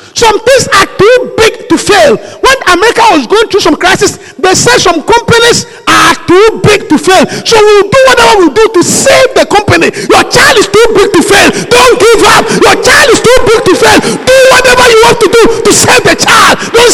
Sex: male